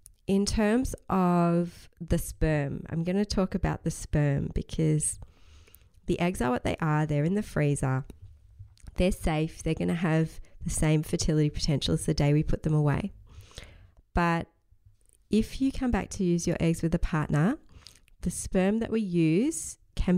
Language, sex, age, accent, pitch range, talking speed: English, female, 20-39, Australian, 135-175 Hz, 170 wpm